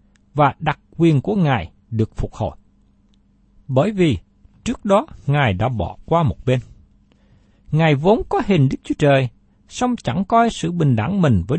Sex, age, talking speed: male, 60-79, 170 wpm